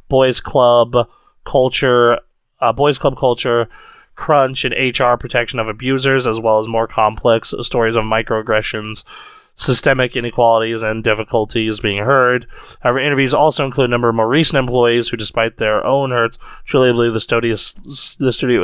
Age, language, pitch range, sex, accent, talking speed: 20-39, English, 110-135 Hz, male, American, 150 wpm